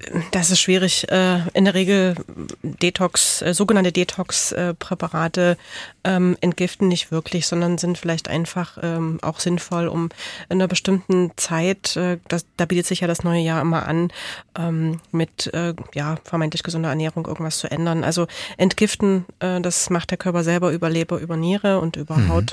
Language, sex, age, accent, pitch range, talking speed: German, female, 30-49, German, 160-180 Hz, 140 wpm